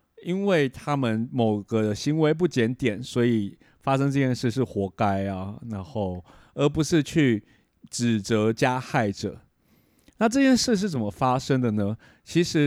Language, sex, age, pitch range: Chinese, male, 30-49, 110-145 Hz